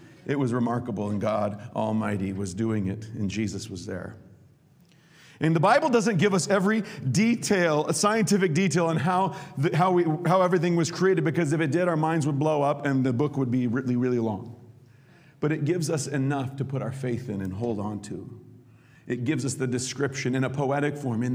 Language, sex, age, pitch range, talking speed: English, male, 40-59, 110-155 Hz, 210 wpm